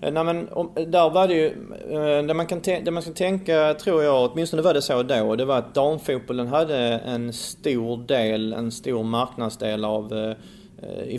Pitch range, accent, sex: 110-130 Hz, Swedish, male